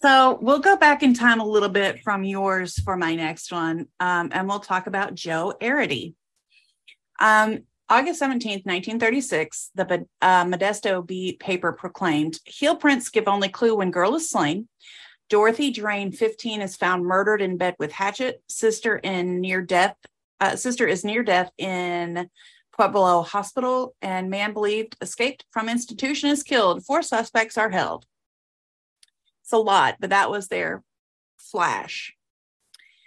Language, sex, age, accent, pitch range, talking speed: English, female, 30-49, American, 185-235 Hz, 150 wpm